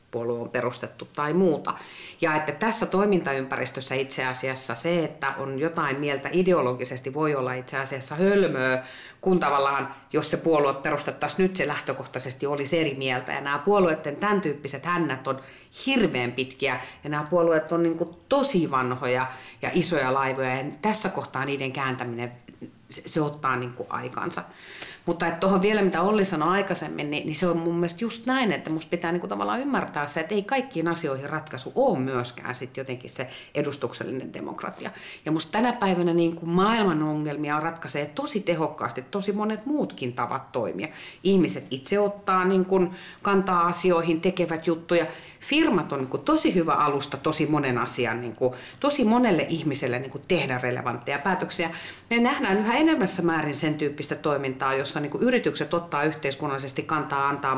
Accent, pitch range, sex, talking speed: native, 135-185 Hz, female, 150 wpm